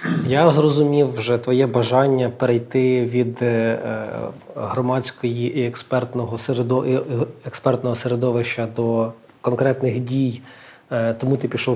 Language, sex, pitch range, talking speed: Ukrainian, male, 125-150 Hz, 85 wpm